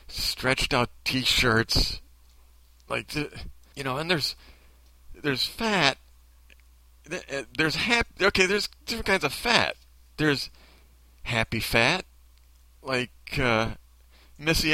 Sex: male